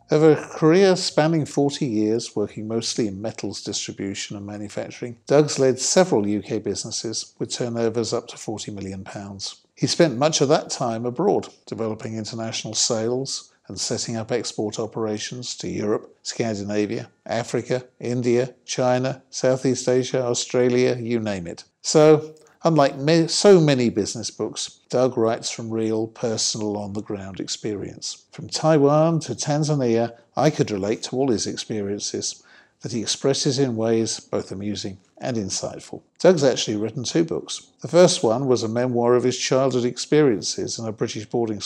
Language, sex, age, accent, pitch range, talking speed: English, male, 50-69, British, 110-140 Hz, 150 wpm